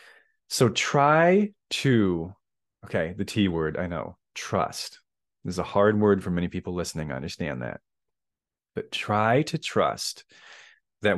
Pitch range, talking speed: 100-155 Hz, 145 wpm